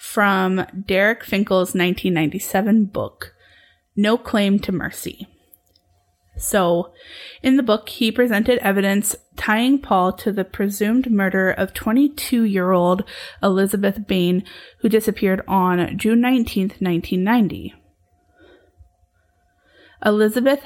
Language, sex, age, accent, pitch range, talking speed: English, female, 20-39, American, 185-225 Hz, 95 wpm